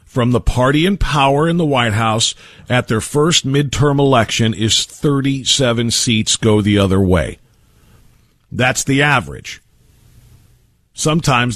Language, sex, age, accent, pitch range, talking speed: English, male, 50-69, American, 115-150 Hz, 130 wpm